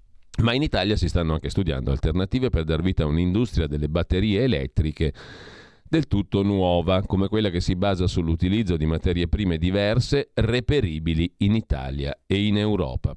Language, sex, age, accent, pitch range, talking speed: Italian, male, 40-59, native, 80-110 Hz, 160 wpm